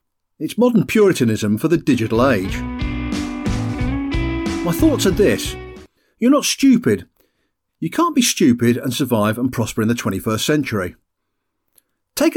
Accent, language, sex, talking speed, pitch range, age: British, English, male, 130 wpm, 110-165 Hz, 50-69